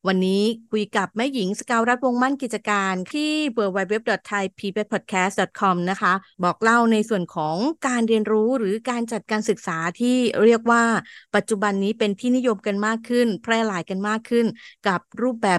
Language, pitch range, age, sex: Thai, 195-240 Hz, 30-49, female